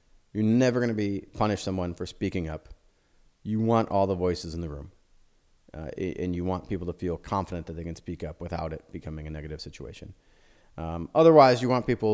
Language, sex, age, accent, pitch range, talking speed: English, male, 30-49, American, 85-100 Hz, 210 wpm